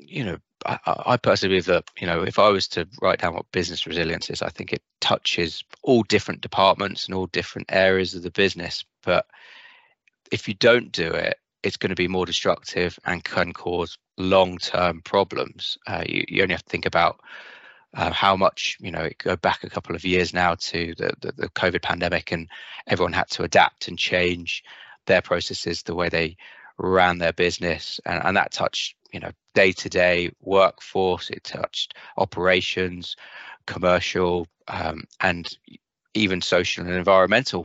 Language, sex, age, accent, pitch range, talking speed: English, male, 20-39, British, 85-100 Hz, 175 wpm